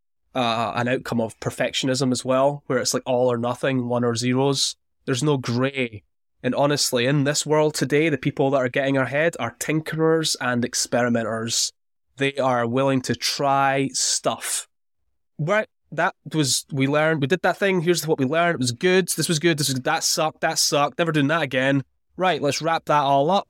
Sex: male